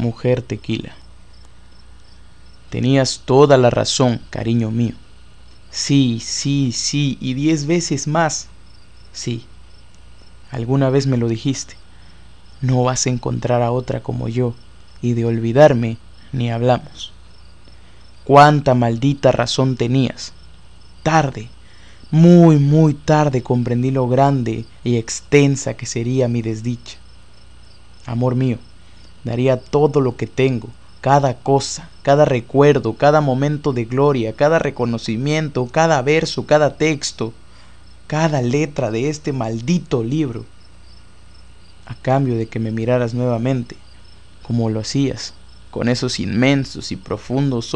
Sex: male